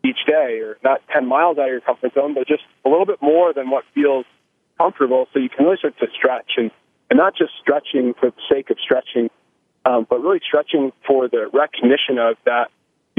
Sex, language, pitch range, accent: male, English, 120-150 Hz, American